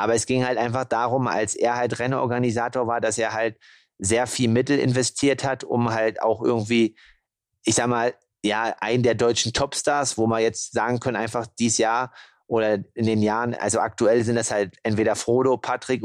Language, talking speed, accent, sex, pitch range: German, 190 wpm, German, male, 110-125 Hz